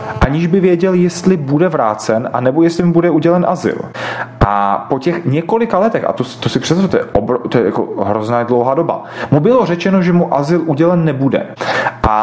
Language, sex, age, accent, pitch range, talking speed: Czech, male, 30-49, native, 110-180 Hz, 200 wpm